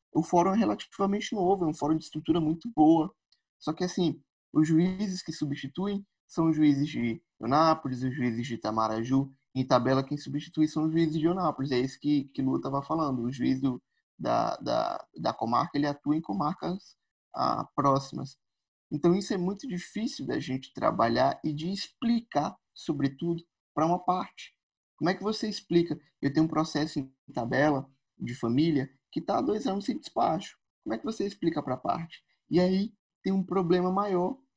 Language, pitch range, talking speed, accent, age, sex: Portuguese, 140-190 Hz, 180 wpm, Brazilian, 20-39, male